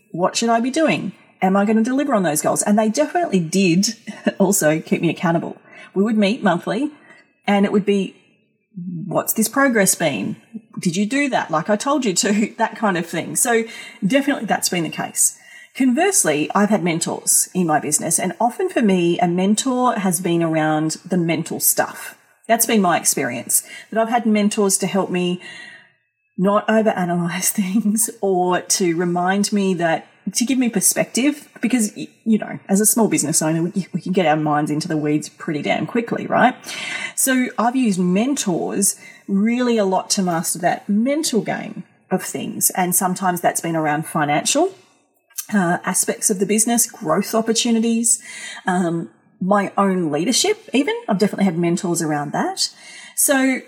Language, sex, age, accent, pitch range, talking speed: English, female, 40-59, Australian, 180-230 Hz, 170 wpm